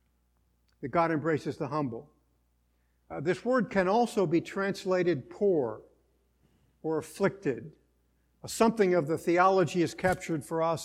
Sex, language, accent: male, English, American